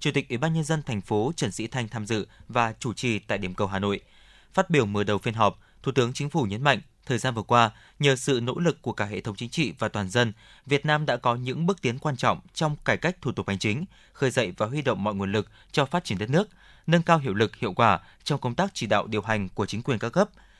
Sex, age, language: male, 20-39, Vietnamese